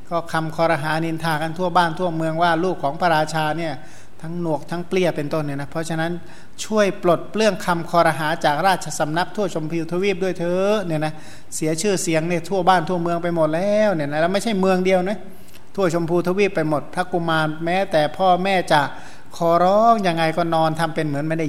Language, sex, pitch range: Thai, male, 155-185 Hz